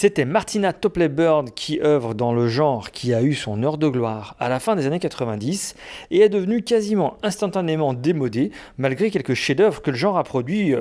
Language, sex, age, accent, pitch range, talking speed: French, male, 40-59, French, 125-180 Hz, 205 wpm